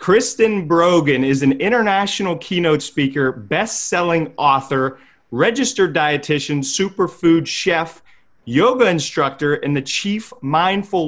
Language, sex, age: English, male, 30-49